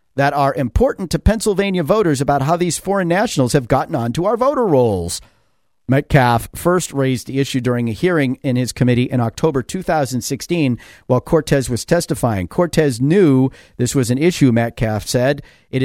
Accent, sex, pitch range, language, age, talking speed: American, male, 125-170 Hz, English, 50-69, 165 wpm